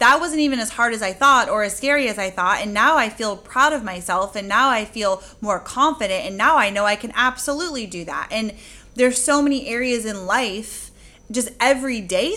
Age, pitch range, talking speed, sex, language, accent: 20-39, 205-260 Hz, 220 wpm, female, English, American